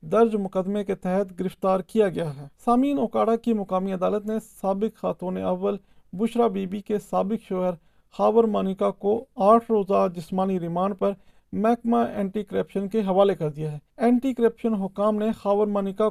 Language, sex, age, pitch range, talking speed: Urdu, male, 40-59, 185-220 Hz, 170 wpm